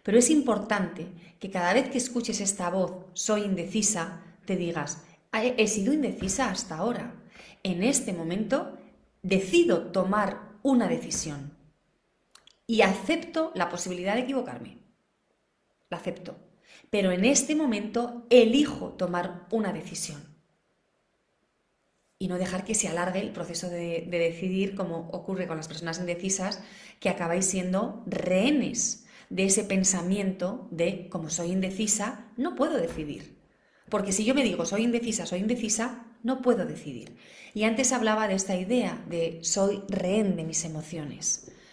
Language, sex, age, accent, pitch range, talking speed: Spanish, female, 30-49, Spanish, 175-230 Hz, 140 wpm